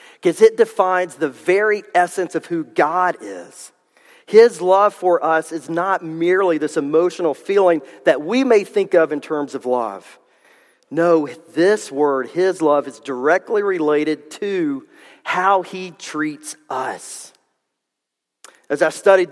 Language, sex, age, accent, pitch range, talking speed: English, male, 40-59, American, 150-195 Hz, 140 wpm